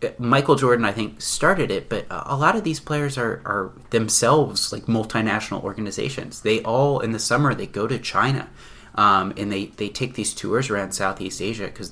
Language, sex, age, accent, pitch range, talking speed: English, male, 30-49, American, 100-125 Hz, 190 wpm